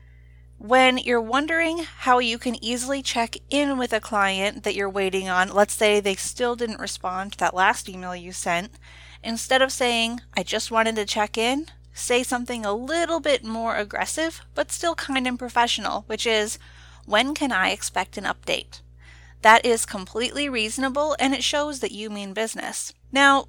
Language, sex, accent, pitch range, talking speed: English, female, American, 195-250 Hz, 175 wpm